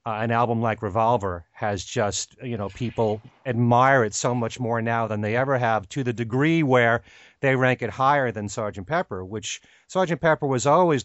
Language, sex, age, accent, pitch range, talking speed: English, male, 40-59, American, 110-140 Hz, 195 wpm